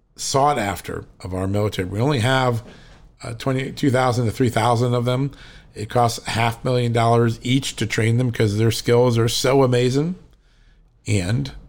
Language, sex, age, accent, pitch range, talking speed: English, male, 50-69, American, 105-130 Hz, 165 wpm